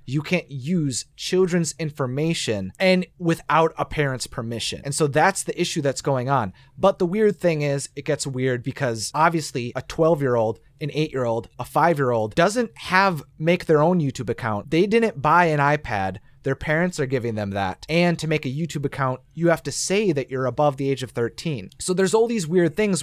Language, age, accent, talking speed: English, 30-49, American, 210 wpm